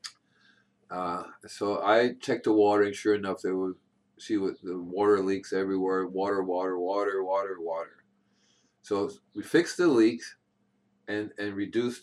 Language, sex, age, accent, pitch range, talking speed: English, male, 40-59, American, 95-120 Hz, 150 wpm